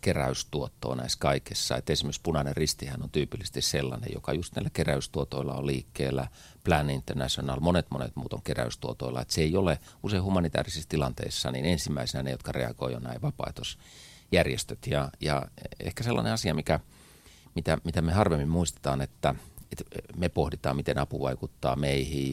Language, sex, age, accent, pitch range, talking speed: Finnish, male, 40-59, native, 65-85 Hz, 150 wpm